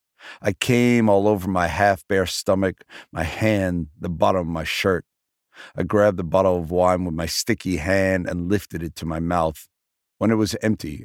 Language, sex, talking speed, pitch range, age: Dutch, male, 190 wpm, 80-95 Hz, 50-69